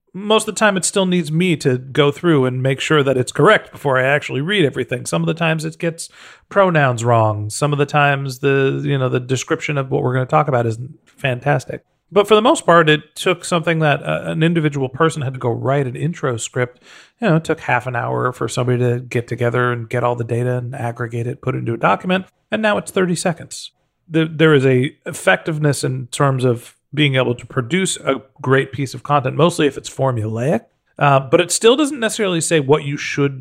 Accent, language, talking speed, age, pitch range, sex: American, English, 230 wpm, 40-59, 125-160 Hz, male